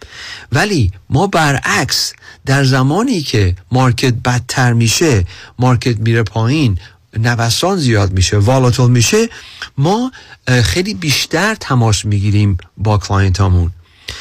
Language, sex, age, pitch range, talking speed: Persian, male, 40-59, 105-130 Hz, 100 wpm